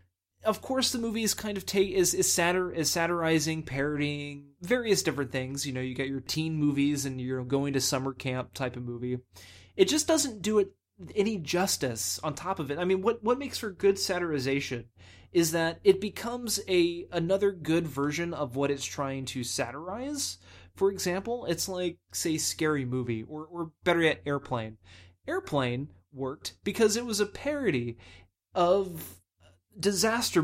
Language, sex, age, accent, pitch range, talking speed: English, male, 20-39, American, 130-195 Hz, 170 wpm